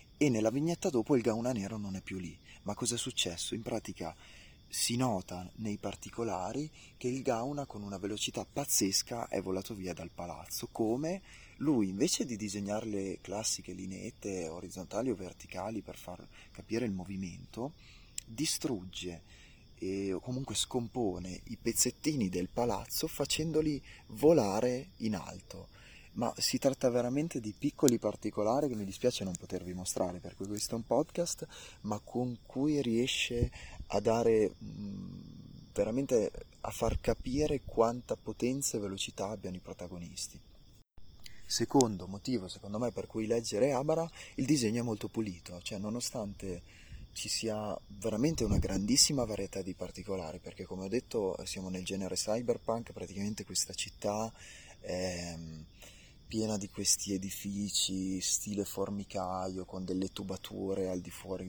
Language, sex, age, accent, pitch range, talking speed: Italian, male, 30-49, native, 95-120 Hz, 140 wpm